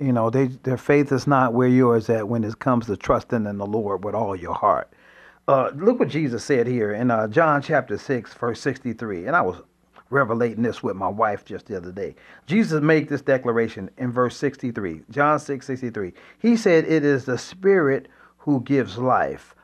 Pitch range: 115-155 Hz